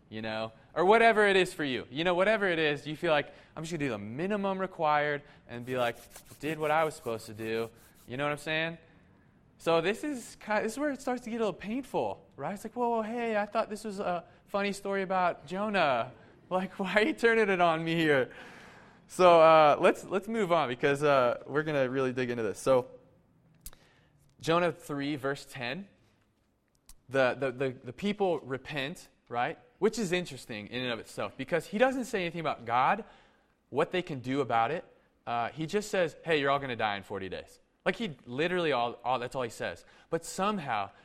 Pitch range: 130-185 Hz